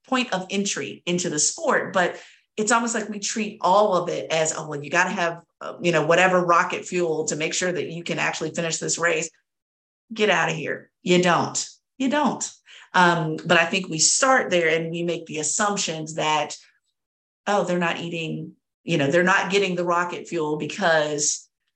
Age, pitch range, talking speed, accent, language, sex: 50-69, 160-195 Hz, 195 wpm, American, English, female